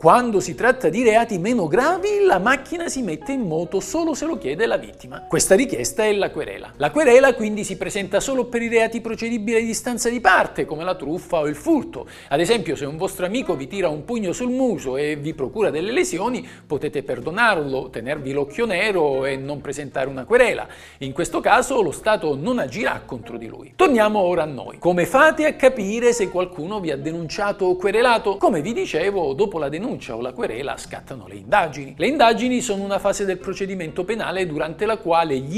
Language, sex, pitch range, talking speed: Italian, male, 170-255 Hz, 200 wpm